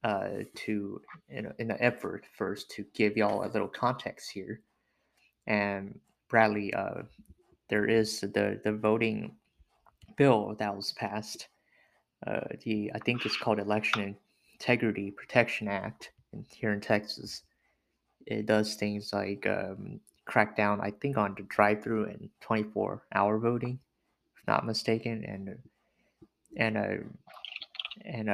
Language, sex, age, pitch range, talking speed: English, male, 20-39, 100-110 Hz, 135 wpm